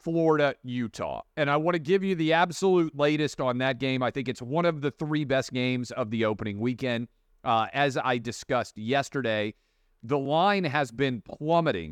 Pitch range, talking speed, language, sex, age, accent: 120-150 Hz, 185 wpm, English, male, 40-59, American